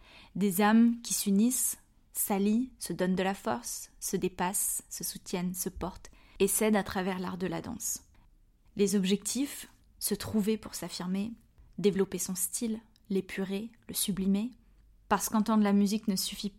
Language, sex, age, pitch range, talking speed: French, female, 20-39, 190-215 Hz, 150 wpm